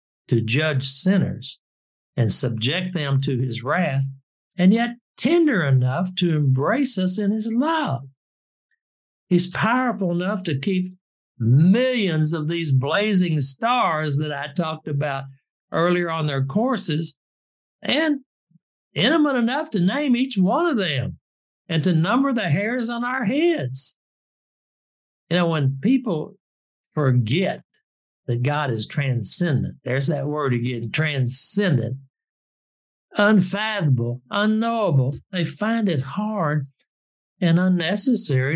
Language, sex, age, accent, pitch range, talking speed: English, male, 60-79, American, 135-215 Hz, 120 wpm